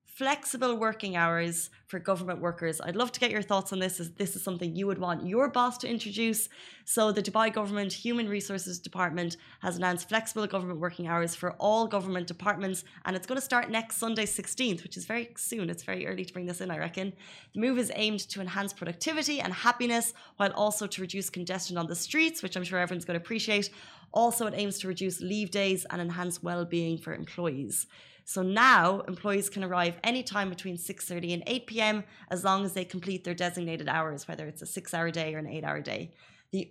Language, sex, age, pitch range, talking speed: Arabic, female, 20-39, 175-215 Hz, 210 wpm